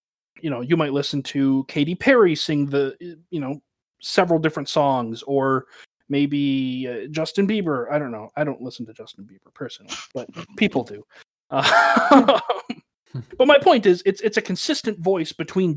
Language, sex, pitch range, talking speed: English, male, 125-165 Hz, 170 wpm